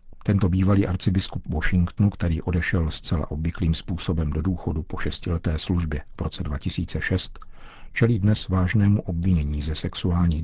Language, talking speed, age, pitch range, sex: Czech, 130 wpm, 50-69, 85-105 Hz, male